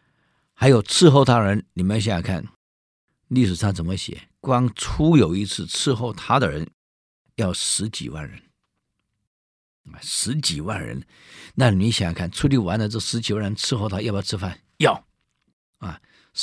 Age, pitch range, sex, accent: 50-69, 90-120 Hz, male, native